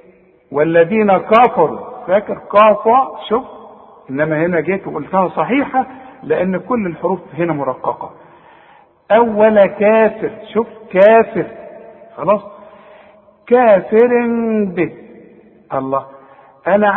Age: 50-69